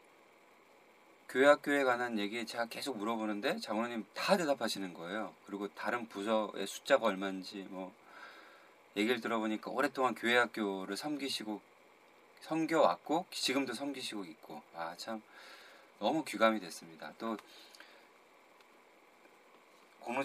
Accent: native